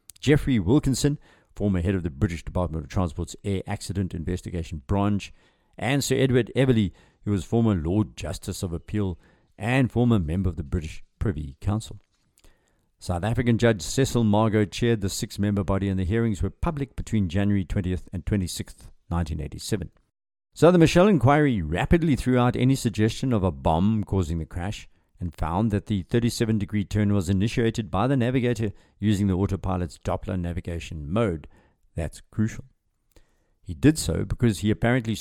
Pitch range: 90-115 Hz